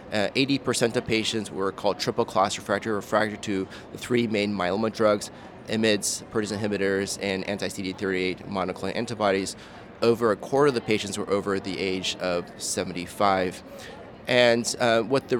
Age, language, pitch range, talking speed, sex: 30-49, English, 100-120 Hz, 150 wpm, male